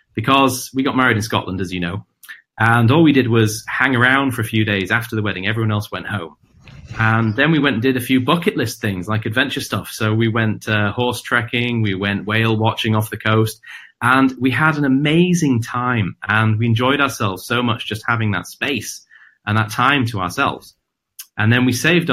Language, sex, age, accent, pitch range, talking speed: English, male, 30-49, British, 105-125 Hz, 215 wpm